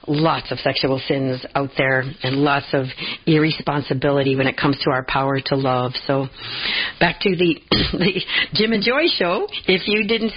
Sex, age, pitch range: female, 50-69, 140-160 Hz